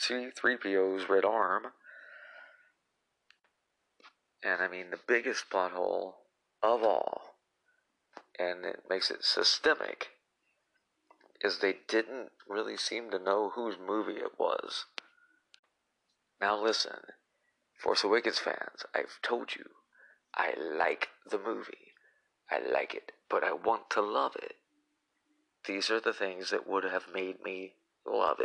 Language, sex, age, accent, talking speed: English, male, 40-59, American, 120 wpm